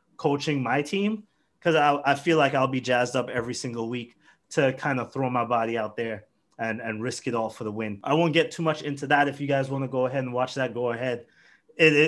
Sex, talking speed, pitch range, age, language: male, 255 wpm, 135-195 Hz, 20-39, English